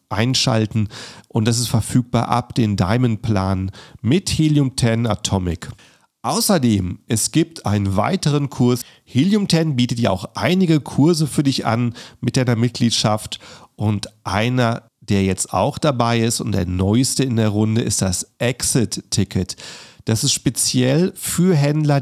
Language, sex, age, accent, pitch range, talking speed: German, male, 40-59, German, 105-135 Hz, 145 wpm